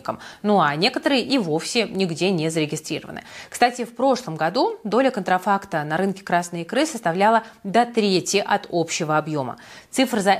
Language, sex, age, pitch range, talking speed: Russian, female, 20-39, 170-225 Hz, 150 wpm